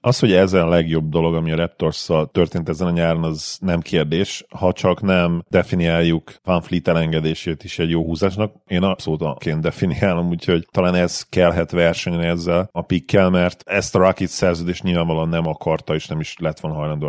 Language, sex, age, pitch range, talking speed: Hungarian, male, 40-59, 80-95 Hz, 185 wpm